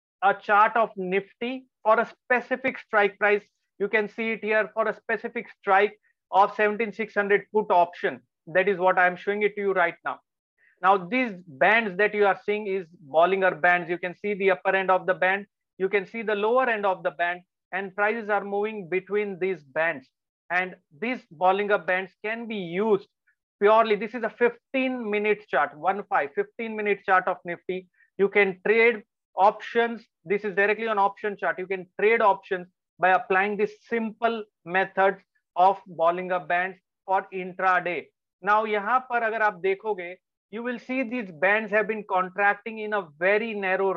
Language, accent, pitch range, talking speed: English, Indian, 185-220 Hz, 170 wpm